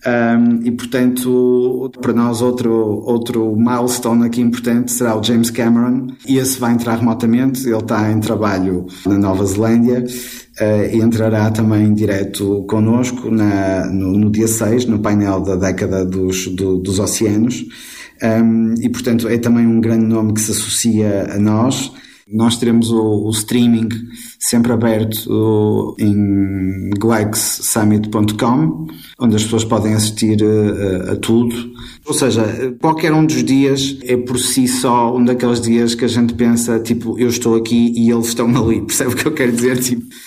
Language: Portuguese